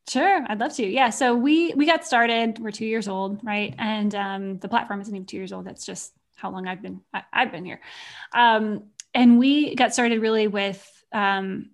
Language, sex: English, female